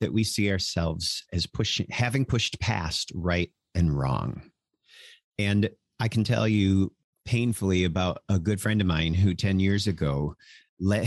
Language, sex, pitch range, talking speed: English, male, 90-115 Hz, 155 wpm